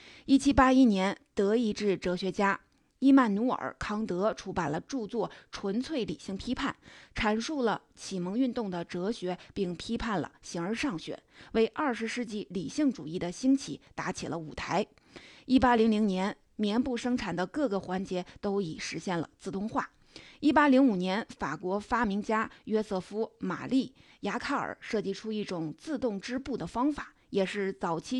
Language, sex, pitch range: Chinese, female, 195-250 Hz